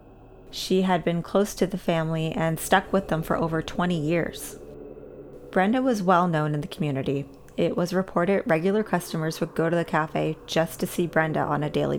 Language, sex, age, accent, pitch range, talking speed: English, female, 20-39, American, 150-185 Hz, 195 wpm